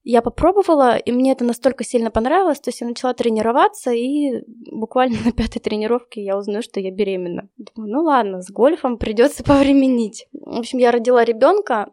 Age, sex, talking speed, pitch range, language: 20-39, female, 175 wpm, 215-260 Hz, Russian